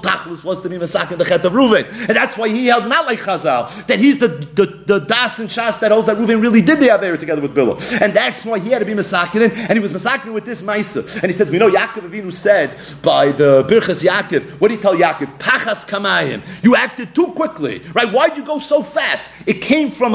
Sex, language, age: male, English, 40-59